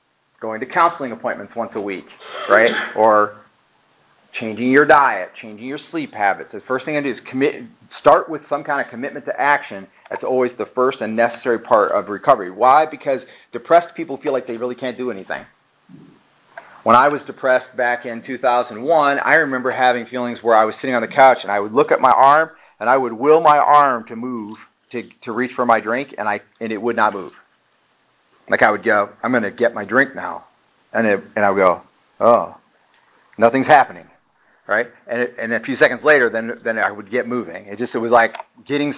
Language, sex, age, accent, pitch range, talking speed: English, male, 40-59, American, 120-145 Hz, 210 wpm